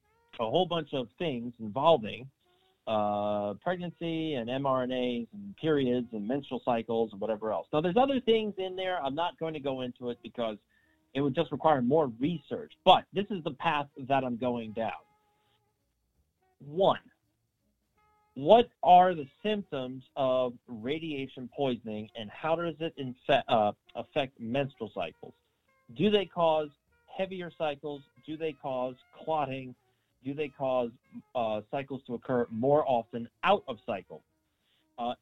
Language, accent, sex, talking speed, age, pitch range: English, American, male, 145 wpm, 40-59, 120-165 Hz